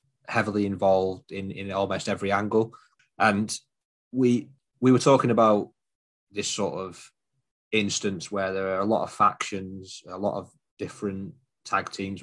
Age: 20-39